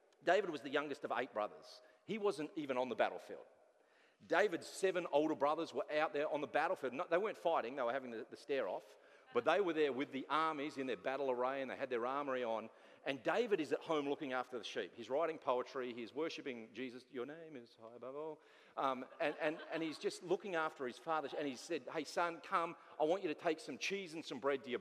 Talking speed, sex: 235 wpm, male